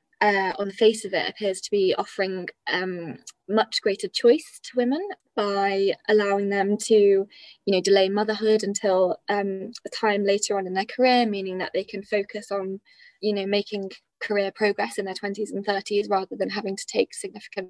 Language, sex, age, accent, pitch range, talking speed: English, female, 20-39, British, 195-215 Hz, 185 wpm